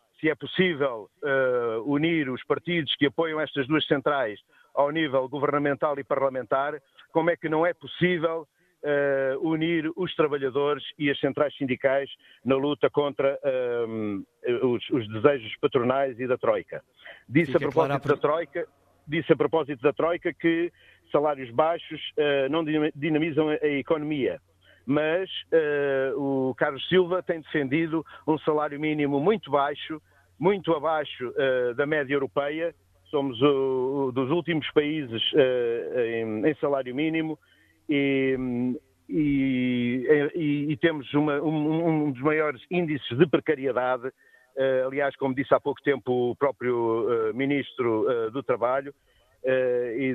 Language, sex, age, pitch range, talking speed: Portuguese, male, 50-69, 135-155 Hz, 130 wpm